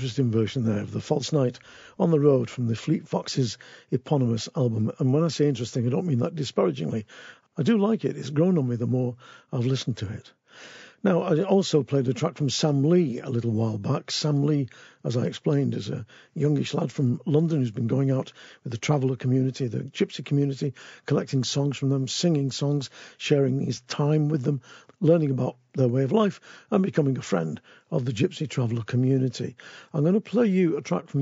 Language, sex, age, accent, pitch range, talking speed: English, male, 50-69, British, 125-150 Hz, 210 wpm